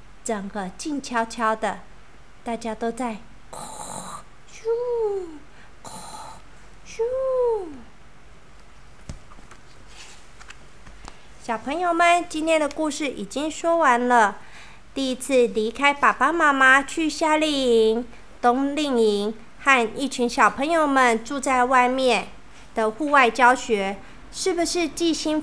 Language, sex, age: Chinese, female, 50-69